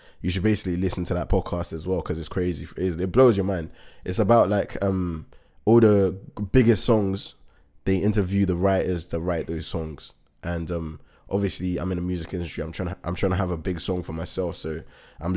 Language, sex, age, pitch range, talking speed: English, male, 20-39, 80-100 Hz, 210 wpm